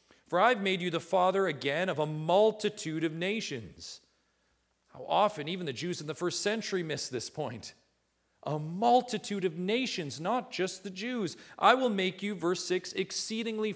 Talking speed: 170 wpm